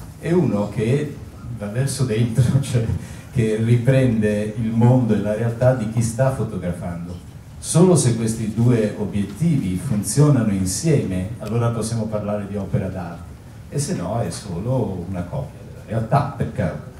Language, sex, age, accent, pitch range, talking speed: Italian, male, 50-69, native, 100-125 Hz, 145 wpm